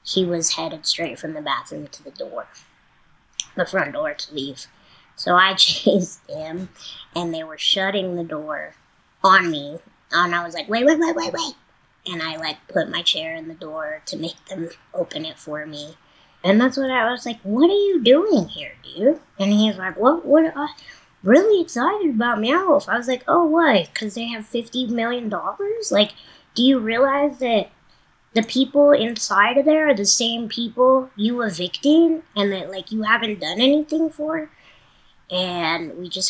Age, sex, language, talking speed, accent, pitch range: 20-39, male, English, 185 wpm, American, 180-265 Hz